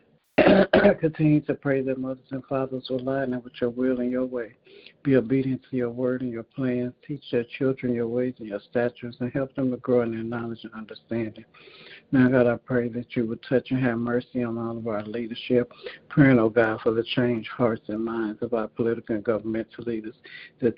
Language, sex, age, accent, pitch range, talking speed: English, male, 60-79, American, 115-130 Hz, 220 wpm